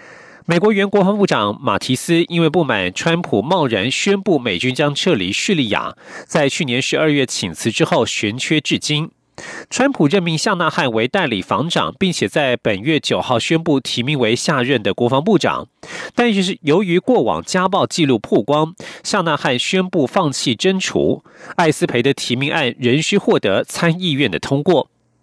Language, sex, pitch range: German, male, 145-195 Hz